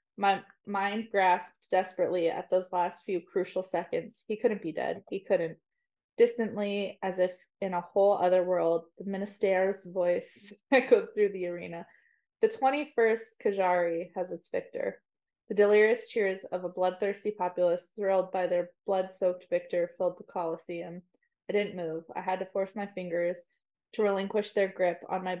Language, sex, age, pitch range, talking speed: English, female, 20-39, 180-215 Hz, 160 wpm